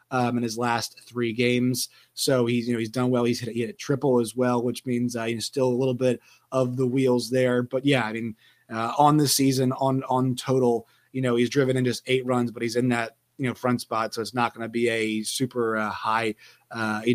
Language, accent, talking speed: English, American, 250 wpm